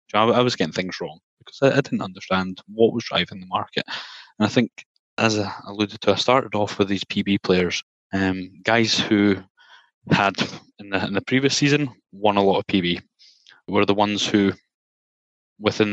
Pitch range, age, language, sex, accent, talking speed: 95-115 Hz, 20-39, English, male, British, 185 wpm